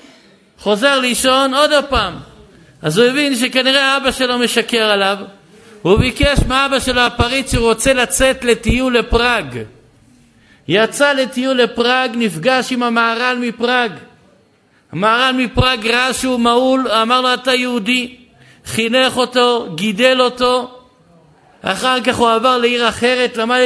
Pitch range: 205-255 Hz